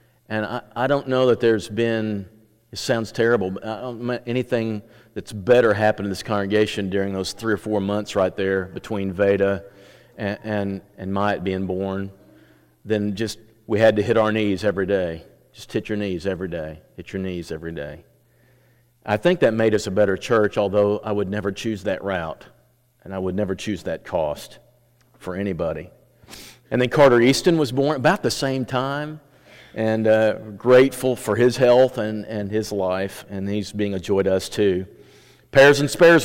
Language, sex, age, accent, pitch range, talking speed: English, male, 40-59, American, 100-120 Hz, 185 wpm